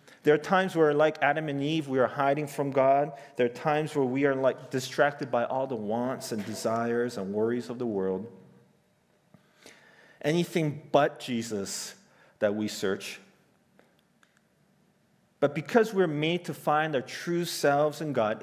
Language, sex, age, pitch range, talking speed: English, male, 40-59, 120-165 Hz, 165 wpm